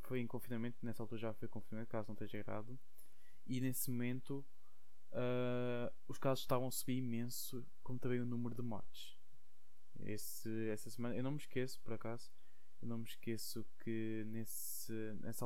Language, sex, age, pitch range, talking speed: Portuguese, male, 20-39, 110-125 Hz, 160 wpm